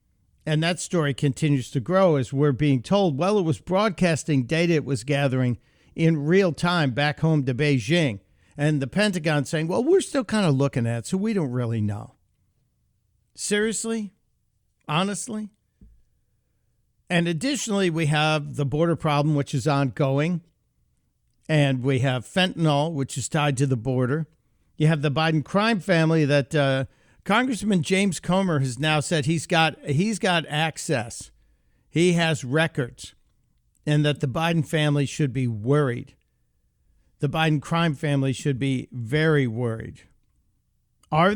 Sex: male